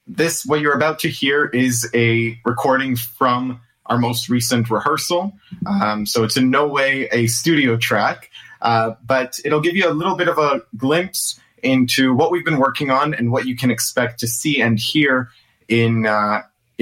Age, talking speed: 30-49, 180 wpm